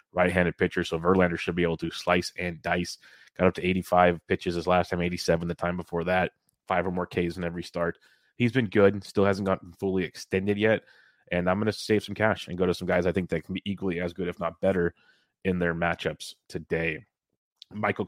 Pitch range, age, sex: 90-95 Hz, 30-49, male